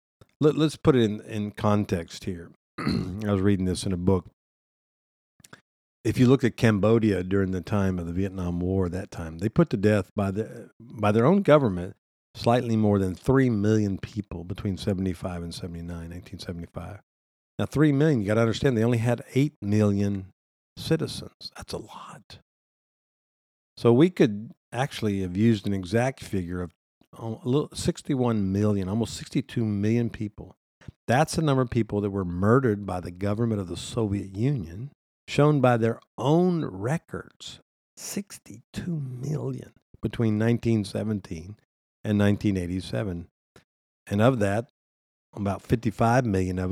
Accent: American